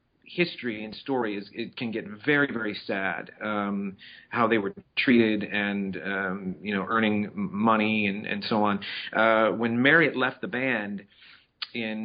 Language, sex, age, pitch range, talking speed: English, male, 40-59, 105-120 Hz, 165 wpm